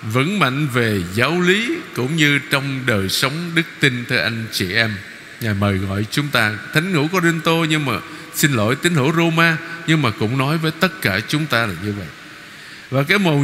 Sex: male